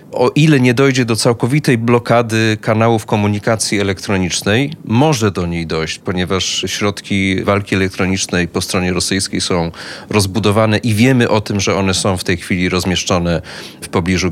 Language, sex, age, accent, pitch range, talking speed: Polish, male, 30-49, native, 95-135 Hz, 150 wpm